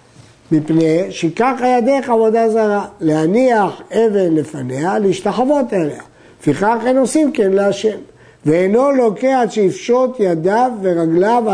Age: 60-79